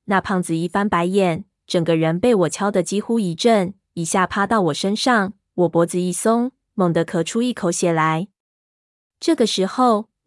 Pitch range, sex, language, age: 170-210 Hz, female, Chinese, 20-39